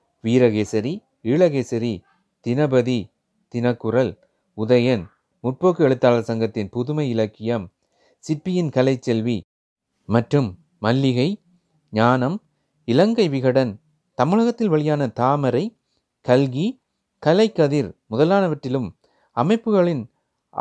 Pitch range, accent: 115-155 Hz, native